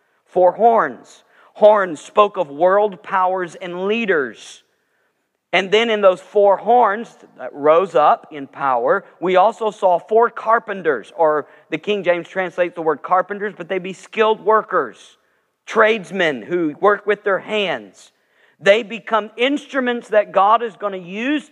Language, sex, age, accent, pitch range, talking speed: English, male, 50-69, American, 180-220 Hz, 150 wpm